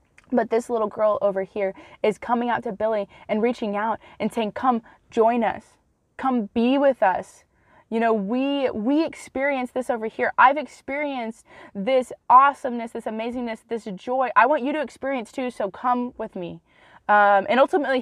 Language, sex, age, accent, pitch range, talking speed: English, female, 20-39, American, 195-255 Hz, 175 wpm